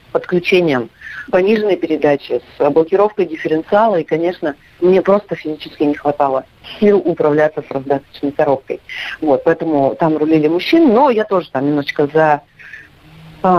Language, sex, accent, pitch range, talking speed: Russian, female, native, 155-205 Hz, 135 wpm